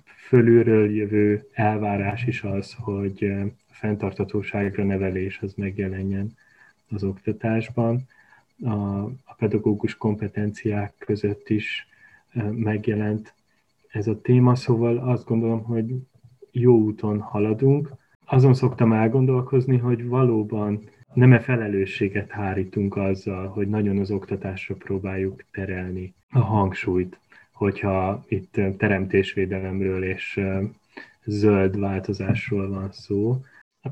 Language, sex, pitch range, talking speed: Hungarian, male, 100-115 Hz, 95 wpm